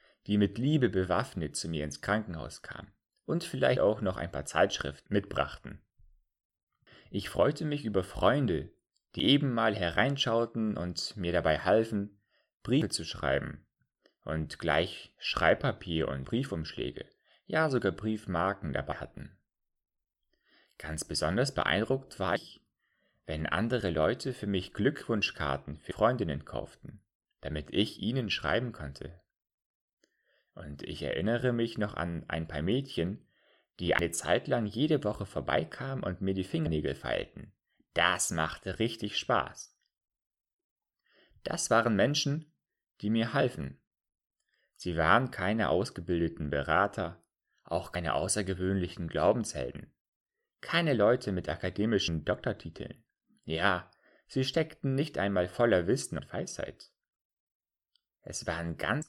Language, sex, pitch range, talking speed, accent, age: German, male, 85-115 Hz, 120 wpm, German, 30-49